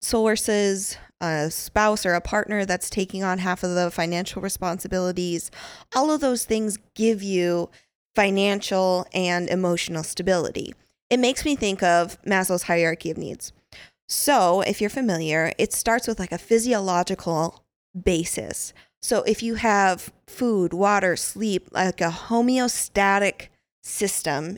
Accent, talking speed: American, 135 wpm